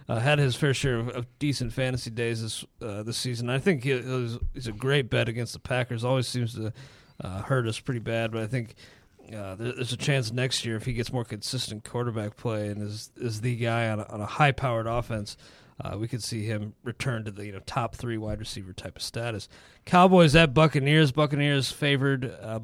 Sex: male